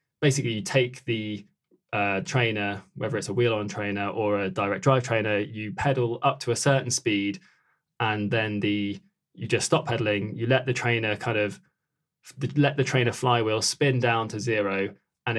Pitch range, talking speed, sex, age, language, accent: 105-130 Hz, 180 wpm, male, 20-39, English, British